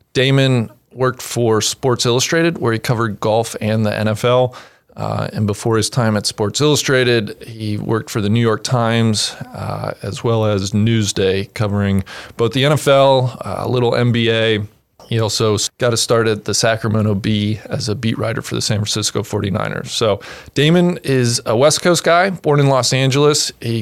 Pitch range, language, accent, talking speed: 105-125 Hz, English, American, 175 wpm